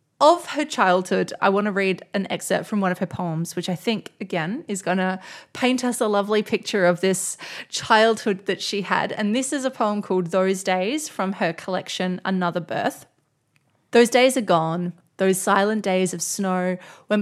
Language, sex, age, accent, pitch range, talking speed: English, female, 20-39, Australian, 180-205 Hz, 190 wpm